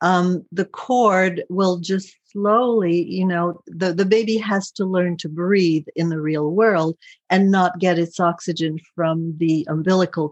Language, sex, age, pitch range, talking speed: English, female, 60-79, 175-215 Hz, 165 wpm